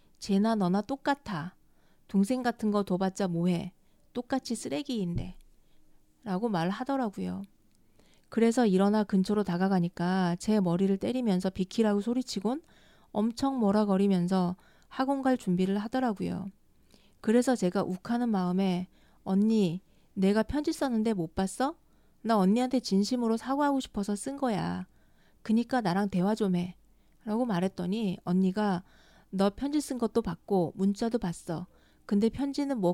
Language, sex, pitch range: Korean, female, 185-230 Hz